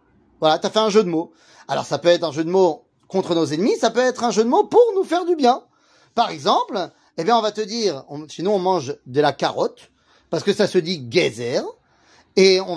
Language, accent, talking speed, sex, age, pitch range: French, French, 250 wpm, male, 30-49, 160-255 Hz